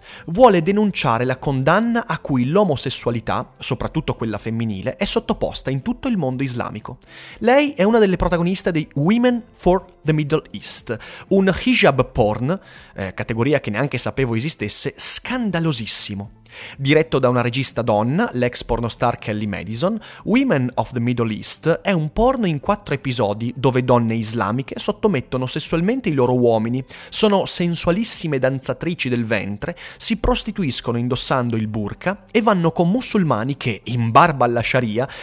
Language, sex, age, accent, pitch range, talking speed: Italian, male, 30-49, native, 120-175 Hz, 145 wpm